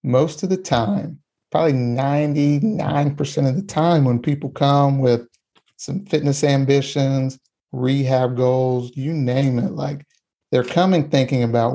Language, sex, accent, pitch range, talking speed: English, male, American, 125-145 Hz, 140 wpm